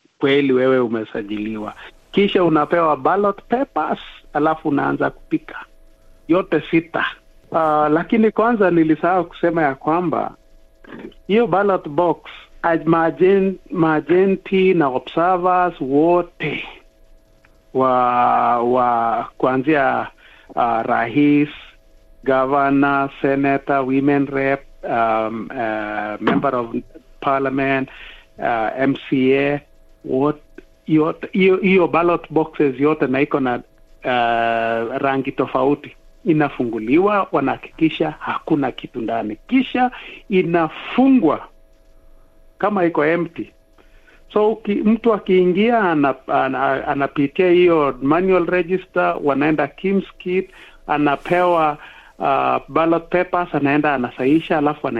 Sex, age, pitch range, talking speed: male, 60-79, 130-175 Hz, 90 wpm